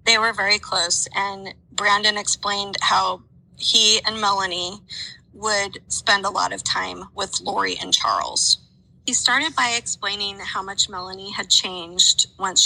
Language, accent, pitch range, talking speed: English, American, 185-220 Hz, 145 wpm